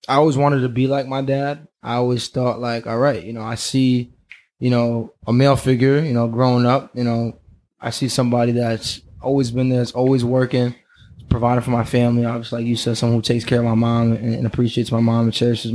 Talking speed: 235 wpm